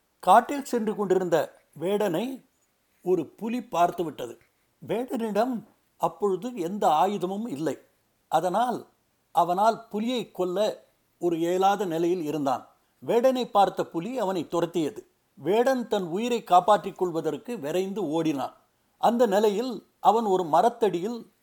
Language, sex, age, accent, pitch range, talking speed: Tamil, male, 60-79, native, 175-235 Hz, 105 wpm